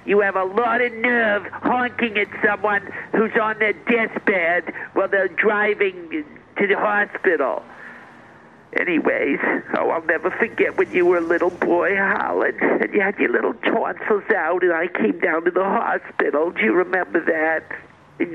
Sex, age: male, 50-69